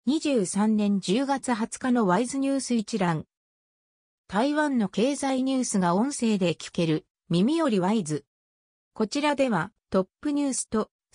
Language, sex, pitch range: Japanese, female, 180-265 Hz